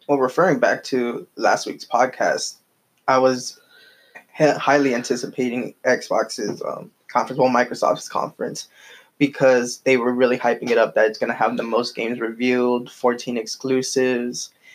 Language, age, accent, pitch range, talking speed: English, 10-29, American, 125-135 Hz, 145 wpm